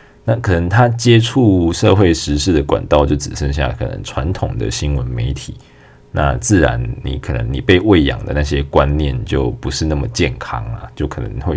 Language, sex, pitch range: Chinese, male, 70-90 Hz